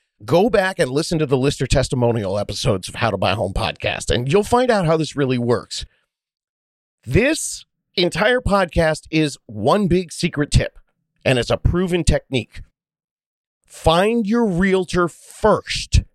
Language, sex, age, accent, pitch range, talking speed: English, male, 40-59, American, 130-185 Hz, 150 wpm